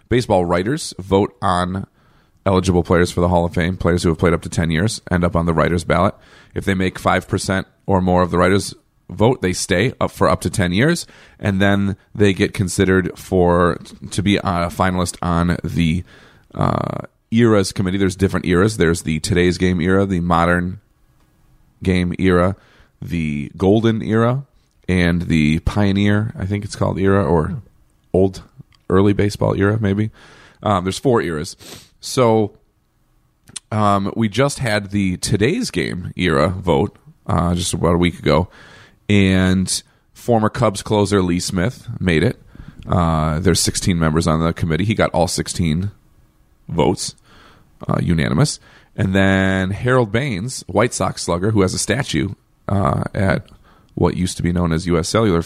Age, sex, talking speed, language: 30-49, male, 165 wpm, English